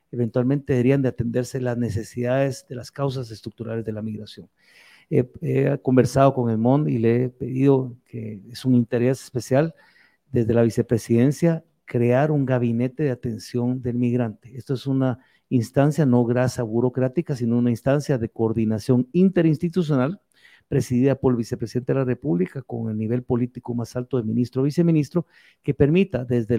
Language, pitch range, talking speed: Spanish, 120-145 Hz, 160 wpm